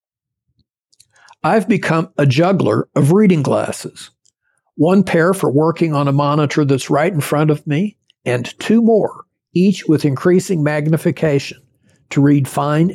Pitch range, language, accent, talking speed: 140-185 Hz, English, American, 140 wpm